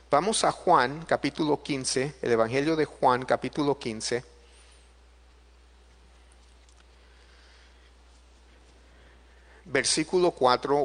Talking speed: 70 wpm